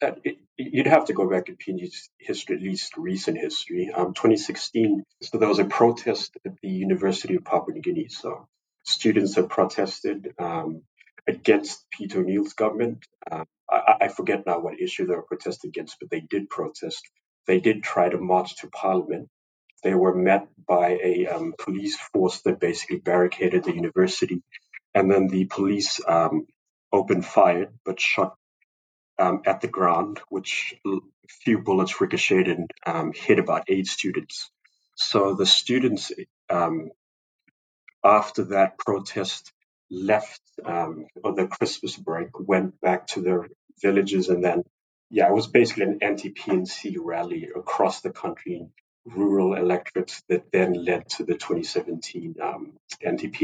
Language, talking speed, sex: English, 150 wpm, male